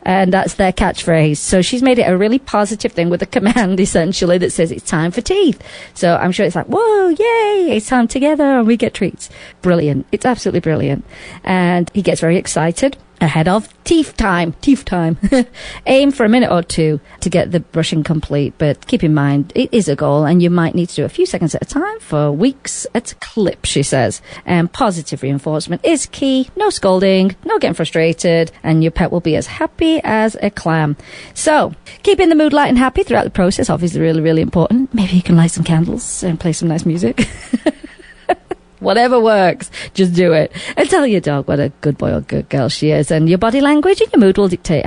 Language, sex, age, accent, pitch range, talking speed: English, female, 40-59, British, 165-250 Hz, 215 wpm